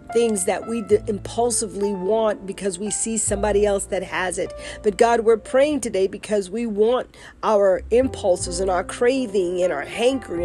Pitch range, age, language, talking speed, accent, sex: 190-235 Hz, 40-59, English, 170 wpm, American, female